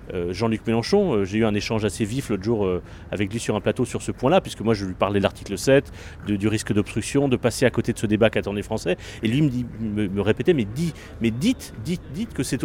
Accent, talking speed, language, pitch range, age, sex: French, 255 wpm, French, 110-140 Hz, 30-49, male